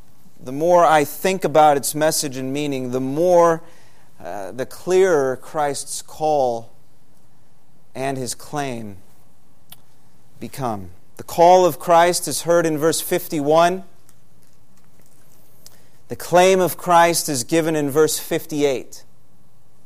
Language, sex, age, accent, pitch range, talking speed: English, male, 40-59, American, 145-195 Hz, 115 wpm